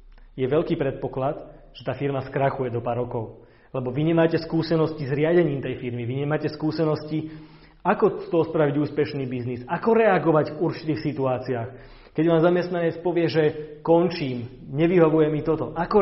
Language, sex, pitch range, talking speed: Slovak, male, 125-155 Hz, 155 wpm